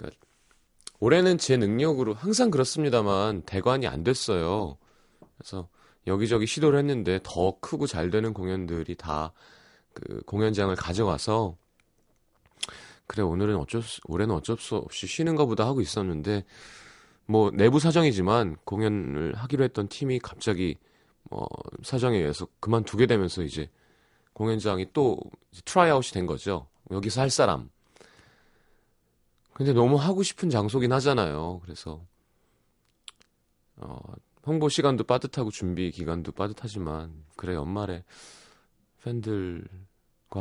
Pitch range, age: 85-125 Hz, 30-49